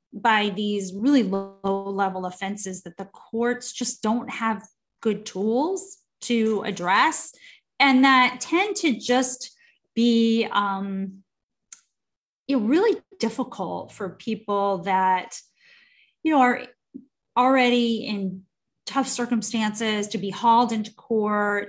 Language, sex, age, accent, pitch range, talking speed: English, female, 30-49, American, 195-245 Hz, 115 wpm